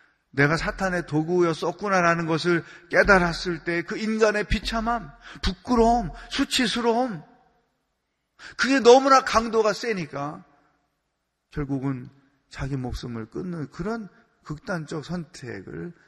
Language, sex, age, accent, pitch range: Korean, male, 40-59, native, 120-170 Hz